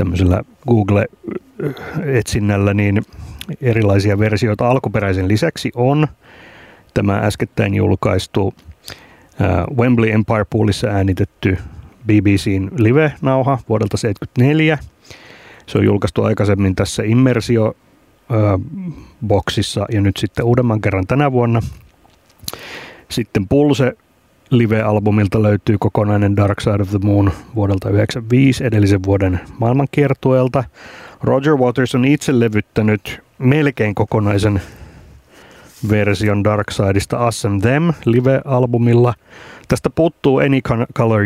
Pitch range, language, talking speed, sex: 100-125 Hz, Finnish, 95 wpm, male